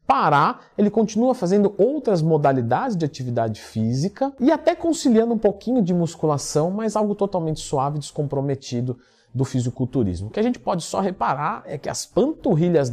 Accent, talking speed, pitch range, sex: Brazilian, 160 wpm, 125-185 Hz, male